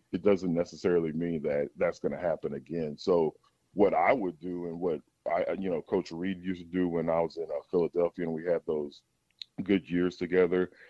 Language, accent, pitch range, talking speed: English, American, 85-100 Hz, 210 wpm